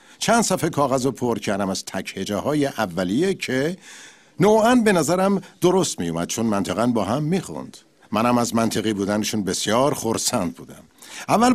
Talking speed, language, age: 150 wpm, Persian, 50-69